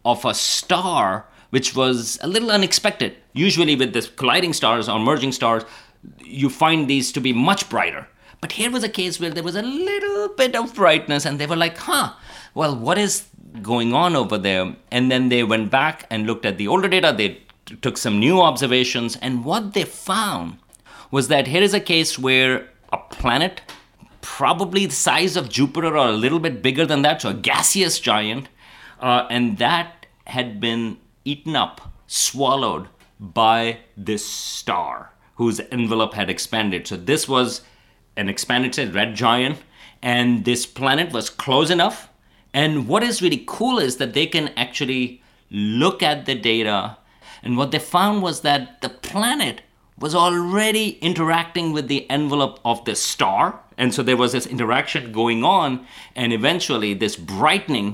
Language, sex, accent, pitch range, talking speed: English, male, Indian, 115-165 Hz, 170 wpm